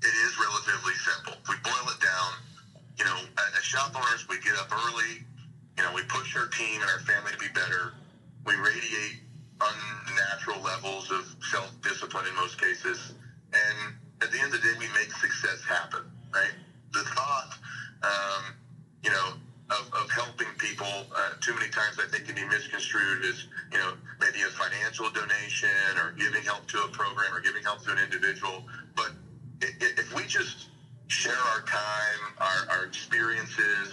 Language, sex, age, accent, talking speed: English, male, 30-49, American, 170 wpm